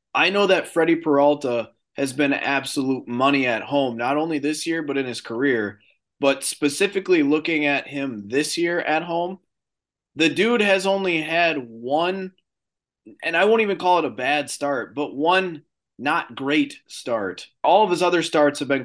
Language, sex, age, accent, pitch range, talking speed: English, male, 20-39, American, 140-175 Hz, 175 wpm